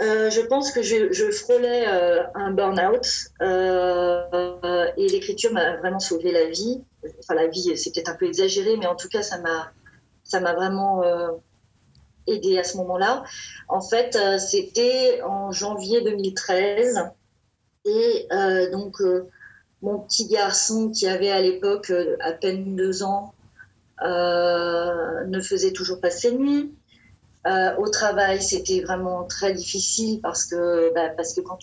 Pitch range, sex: 175-215 Hz, female